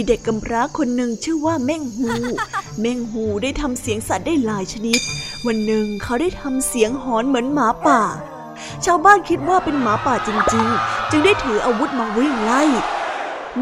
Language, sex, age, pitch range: Thai, female, 20-39, 225-300 Hz